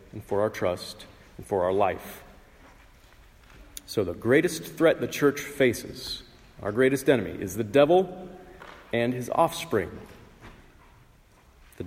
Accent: American